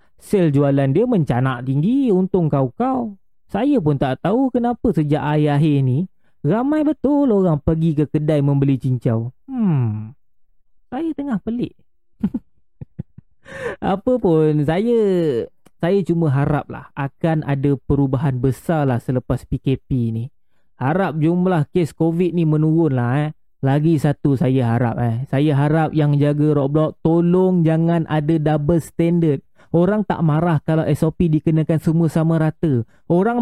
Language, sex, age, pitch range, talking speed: Malay, male, 30-49, 140-185 Hz, 135 wpm